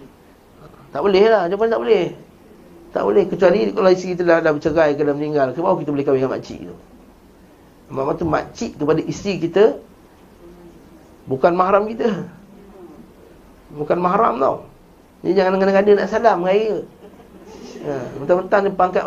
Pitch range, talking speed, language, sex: 145-200 Hz, 150 wpm, Malay, male